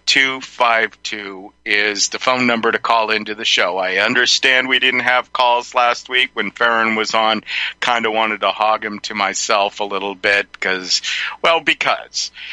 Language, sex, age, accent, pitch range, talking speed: English, male, 50-69, American, 105-130 Hz, 170 wpm